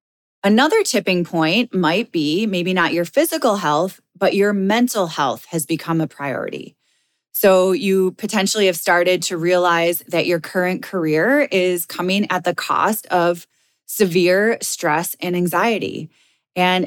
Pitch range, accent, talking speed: 170-200 Hz, American, 140 wpm